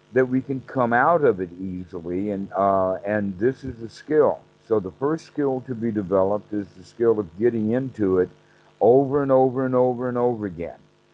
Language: English